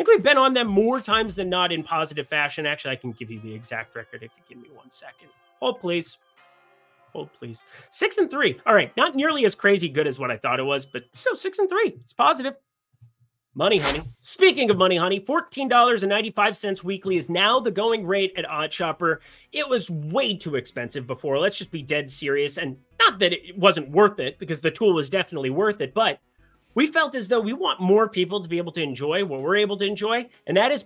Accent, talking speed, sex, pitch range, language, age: American, 235 wpm, male, 155-240 Hz, English, 30-49